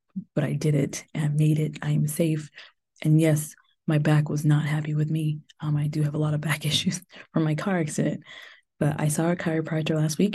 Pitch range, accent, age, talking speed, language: 150-175 Hz, American, 20-39, 230 wpm, English